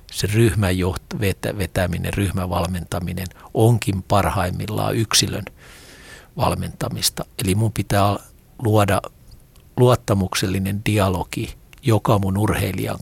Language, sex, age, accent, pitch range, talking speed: Finnish, male, 50-69, native, 95-115 Hz, 85 wpm